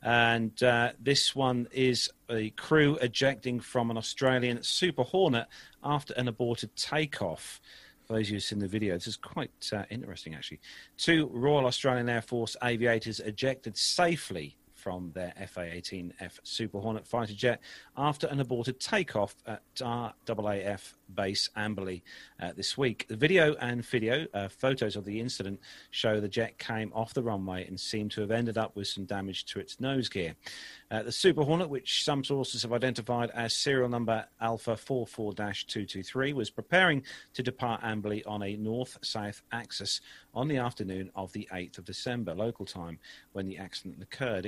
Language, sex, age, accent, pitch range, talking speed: English, male, 40-59, British, 100-130 Hz, 165 wpm